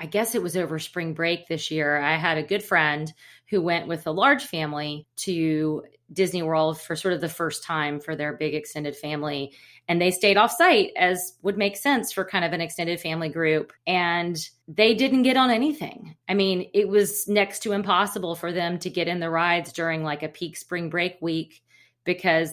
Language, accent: English, American